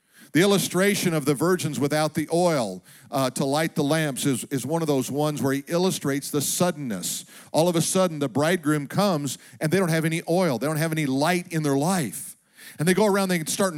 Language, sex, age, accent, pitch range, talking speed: English, male, 50-69, American, 155-190 Hz, 220 wpm